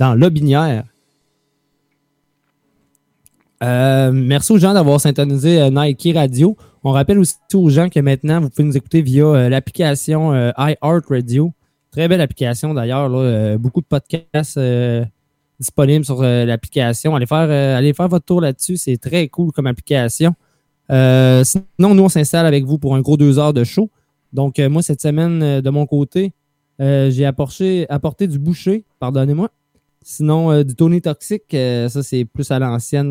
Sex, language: male, French